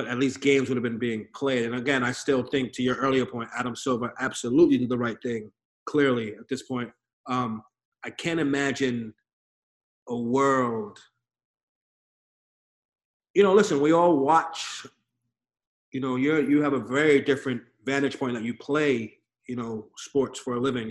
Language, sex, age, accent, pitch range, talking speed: English, male, 30-49, American, 125-160 Hz, 170 wpm